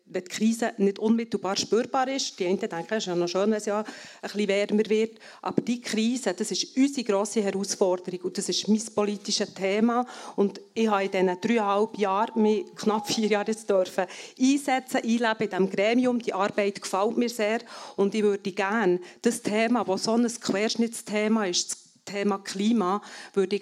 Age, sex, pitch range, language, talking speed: 40-59, female, 200-240 Hz, German, 180 wpm